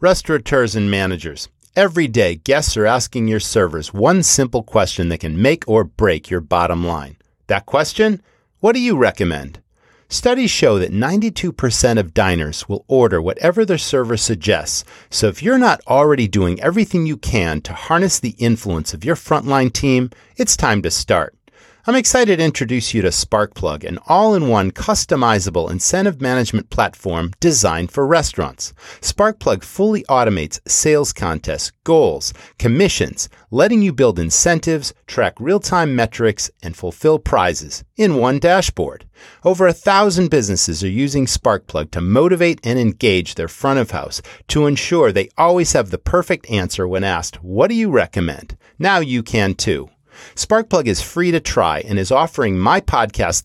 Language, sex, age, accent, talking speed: English, male, 40-59, American, 155 wpm